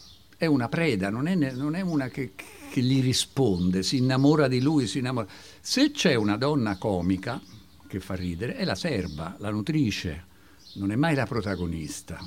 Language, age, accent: Italian, 60-79, native